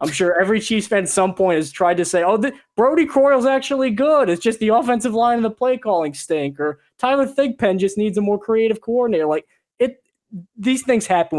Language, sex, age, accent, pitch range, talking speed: English, male, 20-39, American, 150-215 Hz, 205 wpm